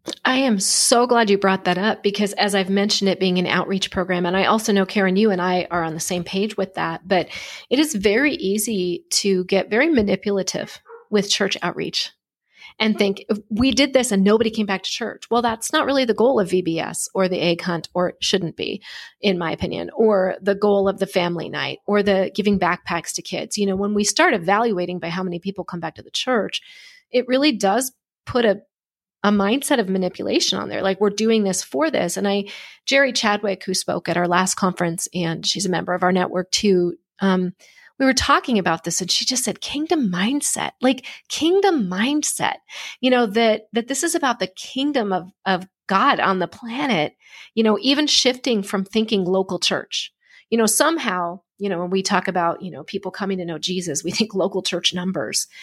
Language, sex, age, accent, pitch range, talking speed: English, female, 30-49, American, 185-235 Hz, 210 wpm